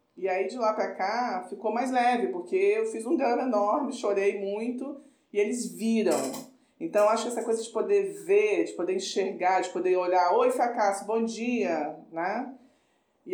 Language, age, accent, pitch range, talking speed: Portuguese, 40-59, Brazilian, 190-250 Hz, 180 wpm